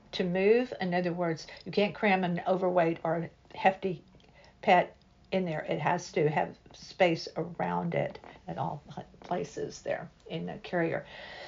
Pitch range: 175-200 Hz